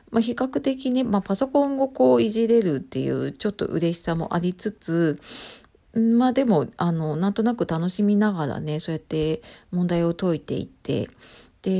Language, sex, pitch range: Japanese, female, 160-205 Hz